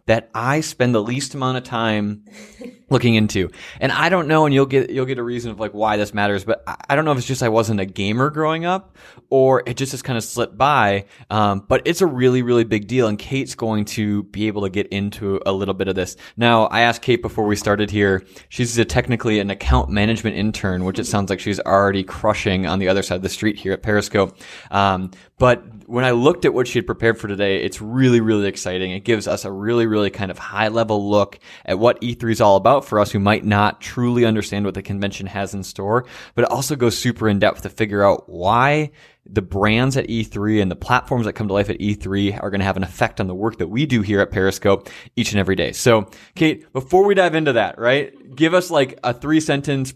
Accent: American